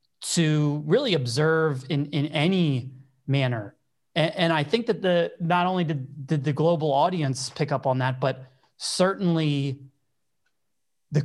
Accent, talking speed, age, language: American, 145 wpm, 30-49, English